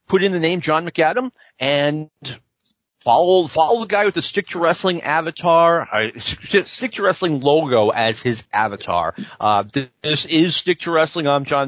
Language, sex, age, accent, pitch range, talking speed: English, male, 40-59, American, 135-180 Hz, 175 wpm